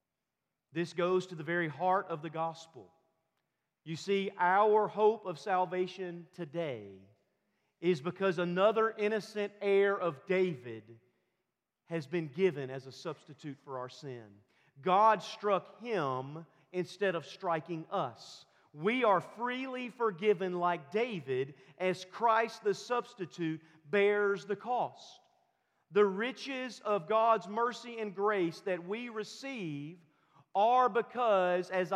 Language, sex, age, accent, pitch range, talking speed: English, male, 40-59, American, 160-210 Hz, 120 wpm